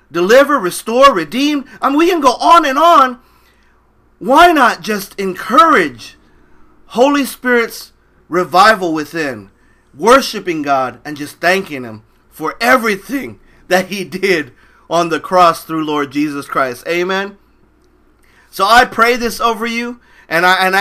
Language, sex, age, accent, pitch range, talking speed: English, male, 40-59, American, 165-215 Hz, 135 wpm